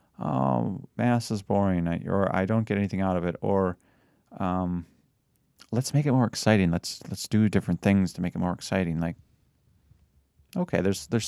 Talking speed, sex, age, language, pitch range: 175 wpm, male, 30-49, English, 90-110 Hz